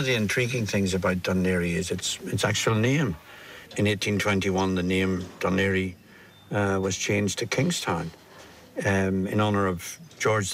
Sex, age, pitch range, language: male, 60-79, 95-110 Hz, English